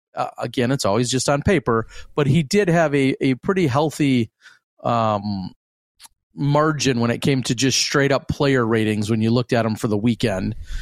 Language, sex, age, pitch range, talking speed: English, male, 40-59, 115-140 Hz, 190 wpm